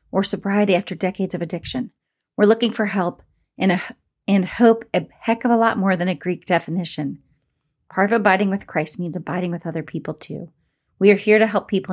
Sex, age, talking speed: female, 40-59, 200 wpm